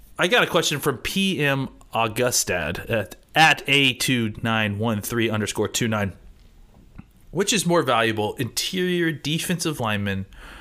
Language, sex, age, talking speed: English, male, 30-49, 130 wpm